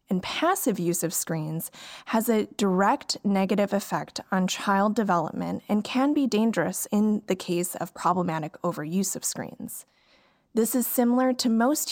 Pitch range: 185-240 Hz